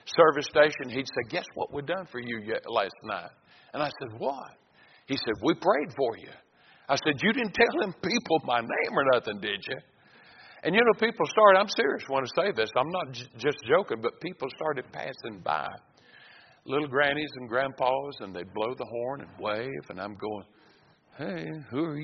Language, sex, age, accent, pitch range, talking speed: English, male, 60-79, American, 125-170 Hz, 200 wpm